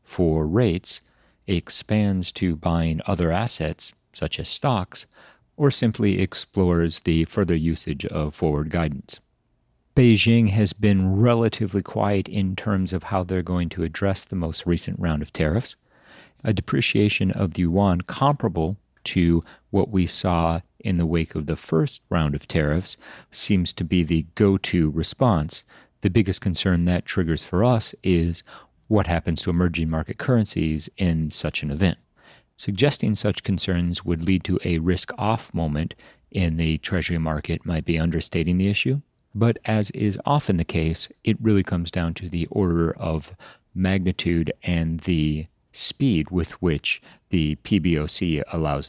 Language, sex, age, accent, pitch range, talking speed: English, male, 40-59, American, 80-105 Hz, 150 wpm